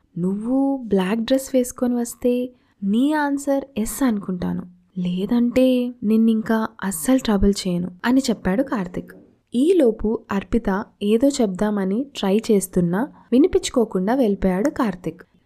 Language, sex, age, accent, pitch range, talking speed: Telugu, female, 20-39, native, 195-275 Hz, 105 wpm